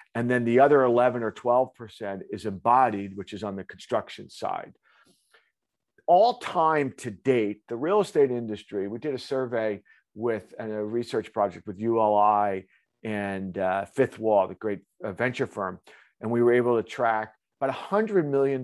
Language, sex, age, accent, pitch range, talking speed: English, male, 50-69, American, 105-155 Hz, 165 wpm